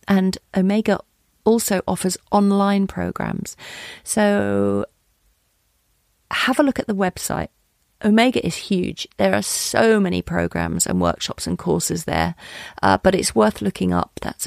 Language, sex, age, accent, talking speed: English, female, 40-59, British, 135 wpm